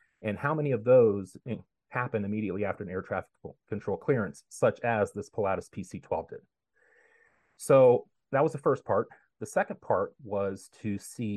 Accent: American